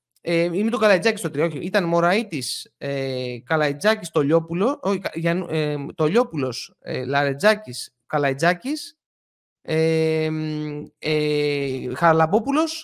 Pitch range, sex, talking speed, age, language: 155-230 Hz, male, 60 wpm, 30-49, Greek